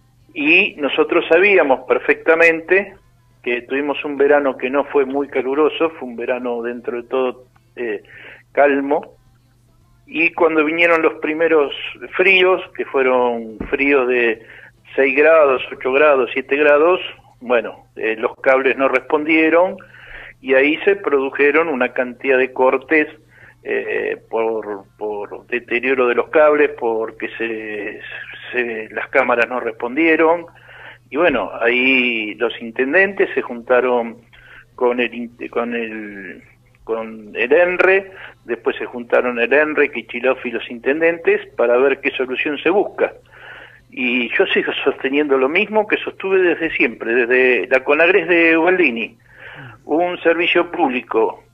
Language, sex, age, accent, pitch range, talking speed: Spanish, male, 50-69, Argentinian, 120-165 Hz, 130 wpm